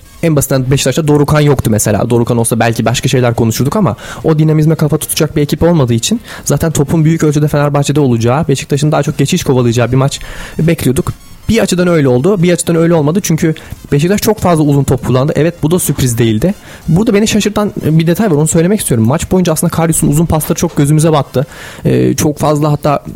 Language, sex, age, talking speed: Turkish, male, 30-49, 200 wpm